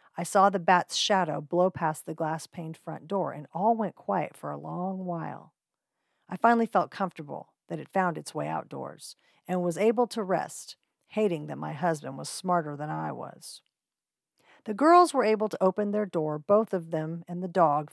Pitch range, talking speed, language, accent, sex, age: 175-230 Hz, 190 wpm, English, American, female, 40-59